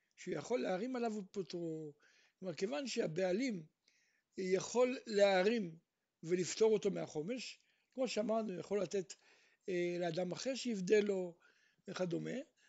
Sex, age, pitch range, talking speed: male, 60-79, 185-255 Hz, 110 wpm